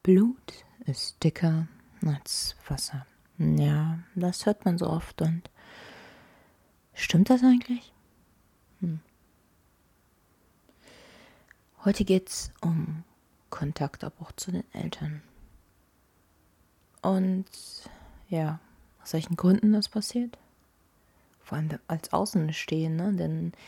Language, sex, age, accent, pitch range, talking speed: German, female, 30-49, German, 130-185 Hz, 90 wpm